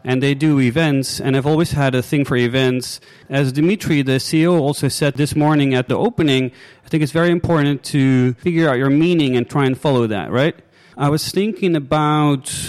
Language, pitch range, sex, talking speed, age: English, 135-170 Hz, male, 205 wpm, 30-49